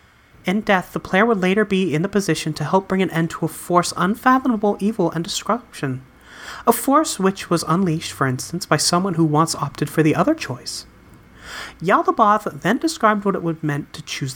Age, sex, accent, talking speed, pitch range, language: 30-49, male, American, 195 wpm, 155-230 Hz, English